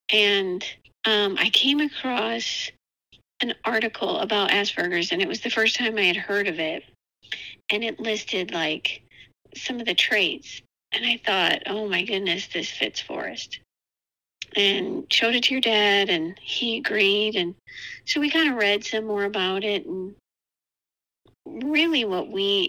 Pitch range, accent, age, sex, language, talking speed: 195-260 Hz, American, 50-69, female, English, 160 wpm